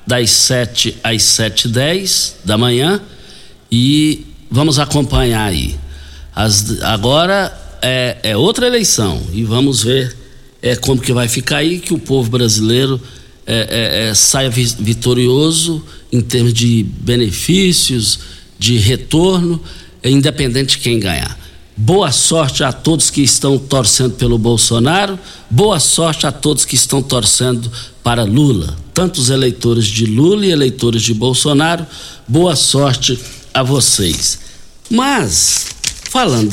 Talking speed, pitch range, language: 130 wpm, 110-150 Hz, Portuguese